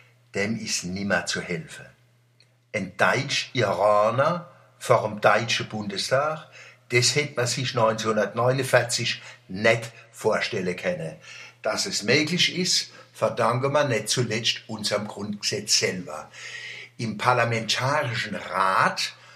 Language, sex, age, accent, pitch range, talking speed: German, male, 60-79, German, 115-155 Hz, 105 wpm